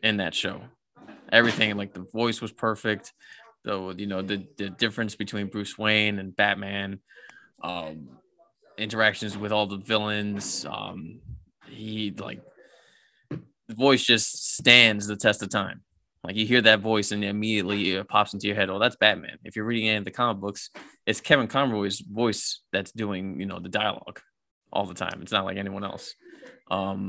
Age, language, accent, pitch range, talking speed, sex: 20-39, English, American, 100-115 Hz, 180 wpm, male